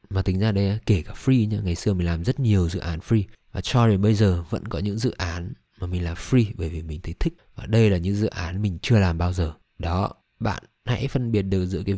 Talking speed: 270 wpm